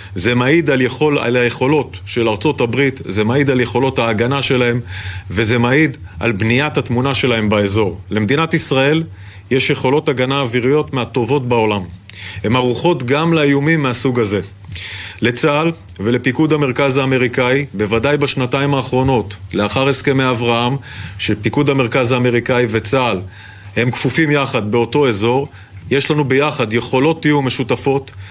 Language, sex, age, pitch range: Hebrew, male, 40-59, 105-140 Hz